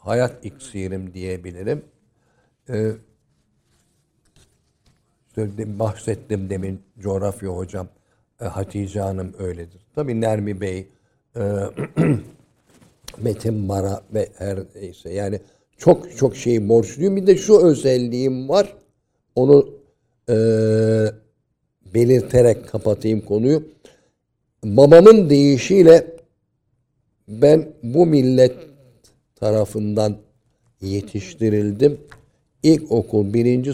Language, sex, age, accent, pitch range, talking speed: Turkish, male, 60-79, native, 105-130 Hz, 80 wpm